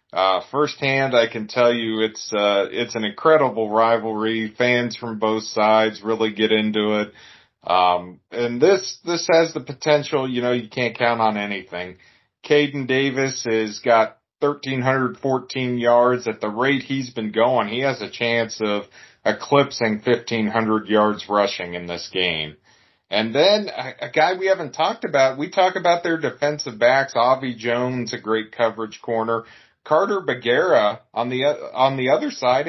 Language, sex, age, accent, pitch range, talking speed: English, male, 40-59, American, 110-140 Hz, 160 wpm